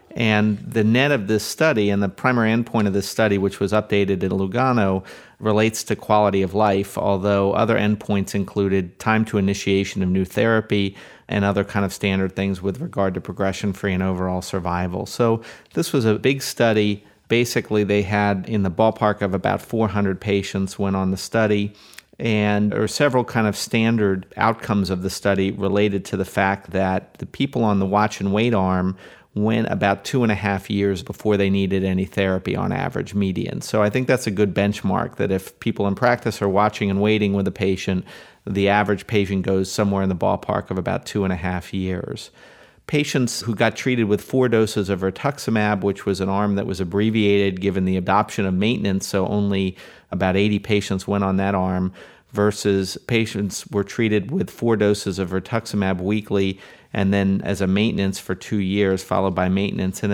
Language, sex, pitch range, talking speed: English, male, 95-110 Hz, 190 wpm